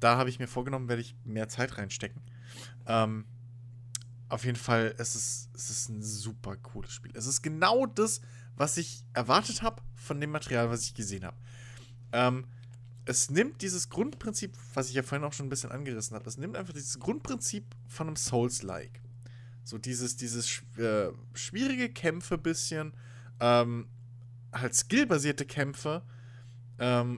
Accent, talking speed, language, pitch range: German, 160 wpm, German, 120-135 Hz